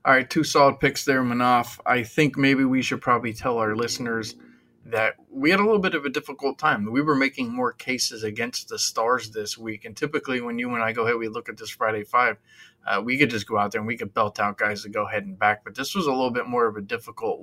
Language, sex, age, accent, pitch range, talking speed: English, male, 20-39, American, 110-135 Hz, 270 wpm